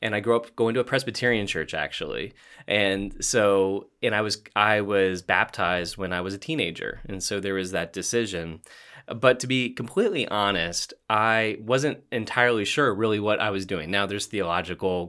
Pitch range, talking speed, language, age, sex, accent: 95-120 Hz, 185 wpm, English, 20-39, male, American